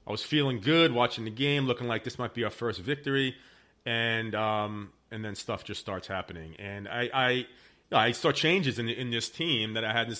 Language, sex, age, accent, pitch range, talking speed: English, male, 40-59, American, 105-130 Hz, 210 wpm